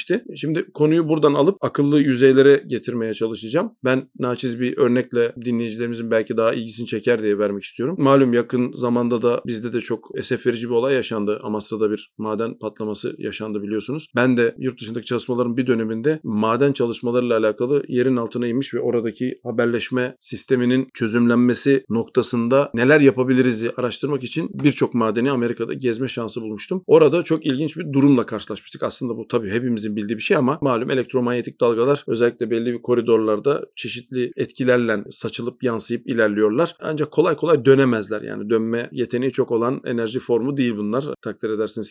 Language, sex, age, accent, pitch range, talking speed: Turkish, male, 40-59, native, 115-135 Hz, 155 wpm